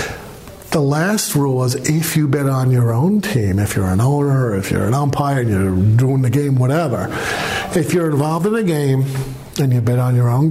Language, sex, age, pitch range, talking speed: English, male, 50-69, 120-155 Hz, 210 wpm